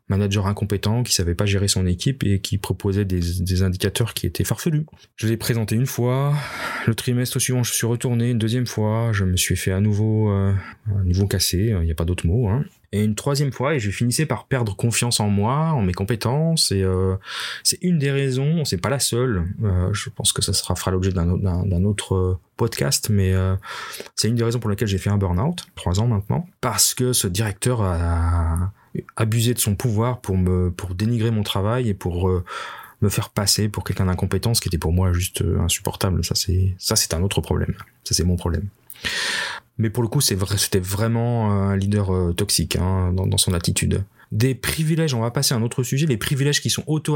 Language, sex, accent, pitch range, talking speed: French, male, French, 95-120 Hz, 225 wpm